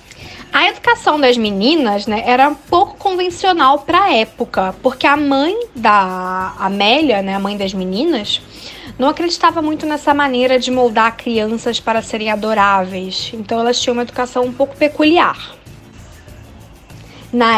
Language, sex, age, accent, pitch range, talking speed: Portuguese, female, 10-29, Brazilian, 210-275 Hz, 145 wpm